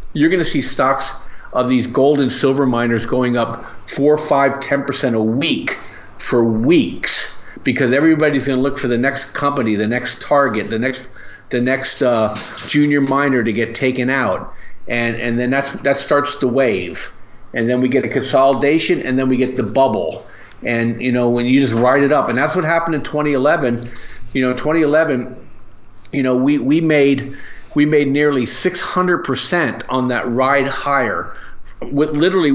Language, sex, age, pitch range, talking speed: English, male, 50-69, 120-140 Hz, 175 wpm